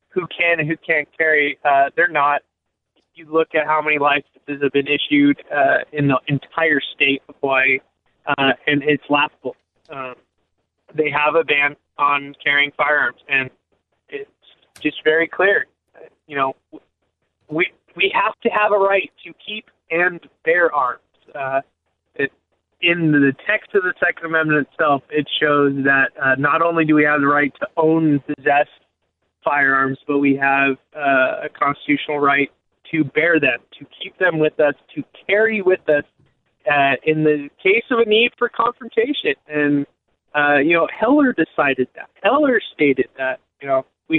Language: English